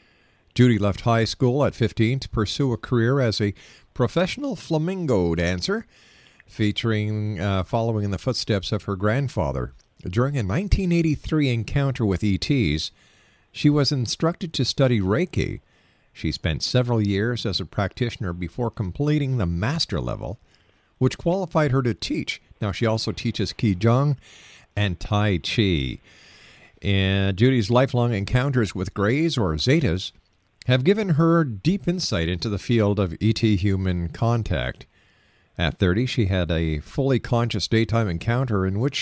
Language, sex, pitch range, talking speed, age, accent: English, male, 100-135 Hz, 140 wpm, 50-69, American